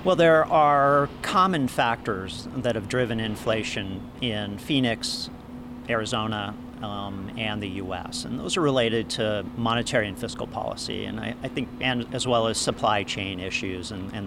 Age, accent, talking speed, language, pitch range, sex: 50-69, American, 160 wpm, English, 105-125 Hz, male